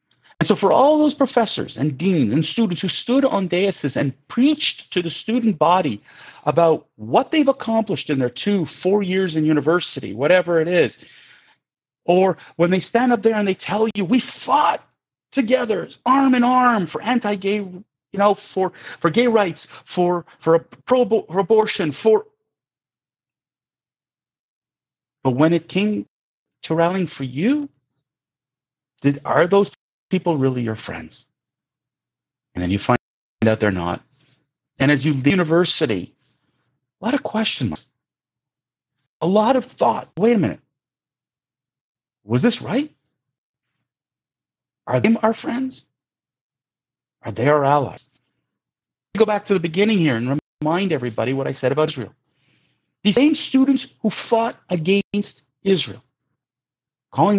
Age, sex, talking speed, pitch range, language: 40-59, male, 145 wpm, 140-220 Hz, English